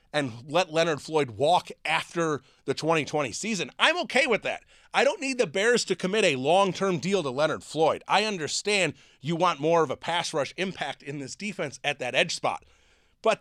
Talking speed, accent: 195 wpm, American